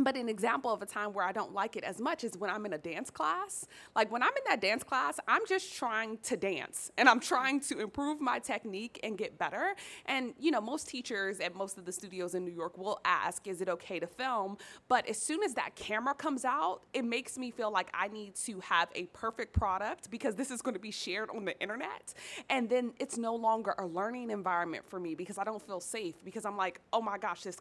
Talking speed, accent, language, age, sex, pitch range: 250 wpm, American, English, 20-39, female, 185-245 Hz